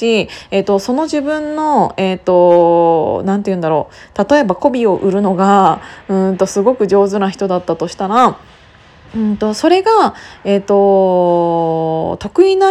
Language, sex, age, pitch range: Japanese, female, 20-39, 185-255 Hz